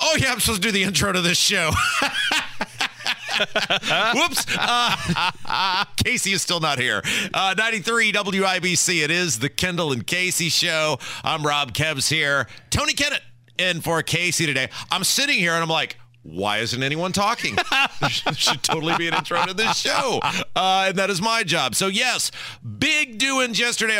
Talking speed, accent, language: 170 wpm, American, English